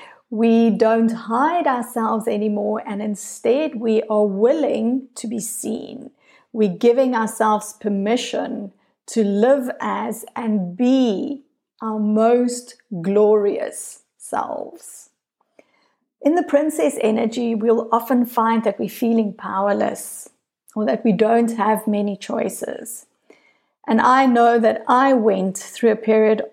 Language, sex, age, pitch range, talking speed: English, female, 50-69, 215-260 Hz, 120 wpm